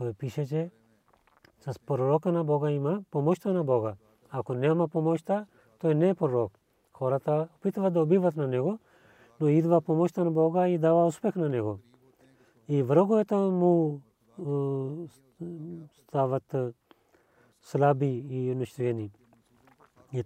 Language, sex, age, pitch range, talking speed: Bulgarian, male, 40-59, 120-155 Hz, 130 wpm